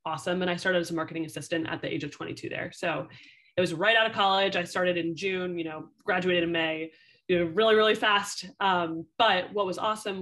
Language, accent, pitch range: English, American, 165-190 Hz